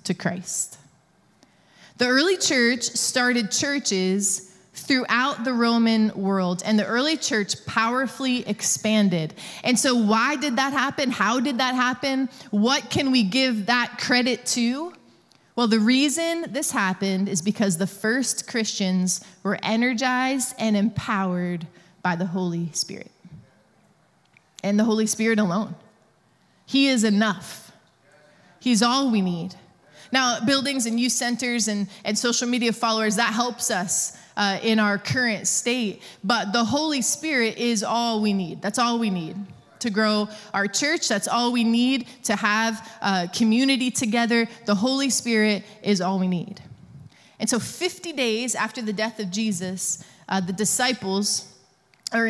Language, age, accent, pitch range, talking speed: English, 20-39, American, 195-245 Hz, 145 wpm